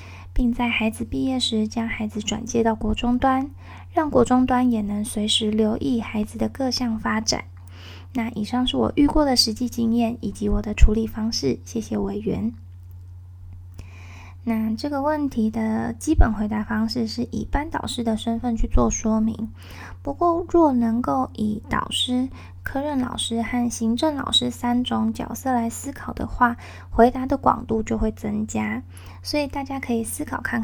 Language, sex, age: Chinese, female, 10-29